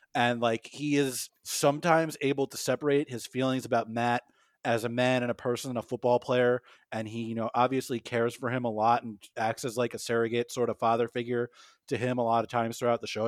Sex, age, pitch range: male, 30-49, 115-130 Hz